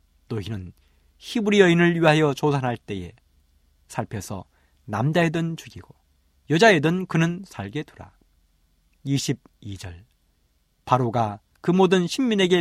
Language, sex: Korean, male